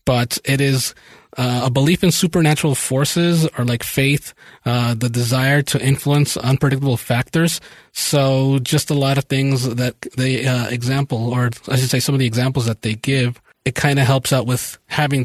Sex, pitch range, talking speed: male, 125-150 Hz, 185 wpm